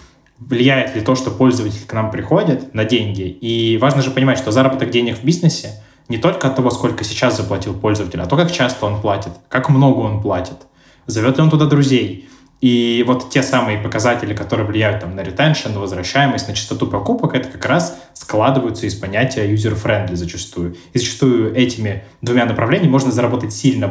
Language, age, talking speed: Russian, 20-39, 185 wpm